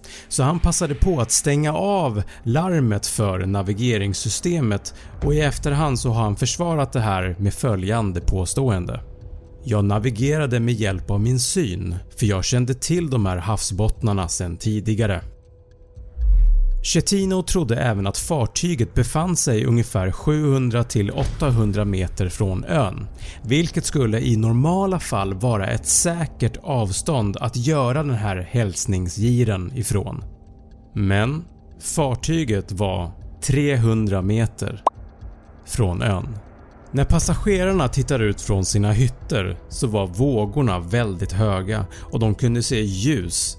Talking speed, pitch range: 125 wpm, 95-135 Hz